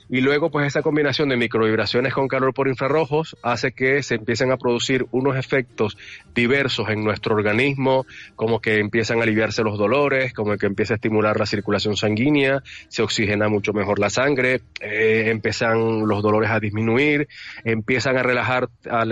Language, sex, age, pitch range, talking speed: Spanish, male, 30-49, 110-130 Hz, 170 wpm